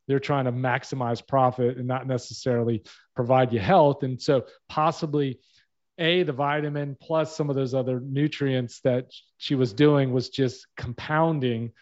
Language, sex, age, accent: English, male, 40-59, American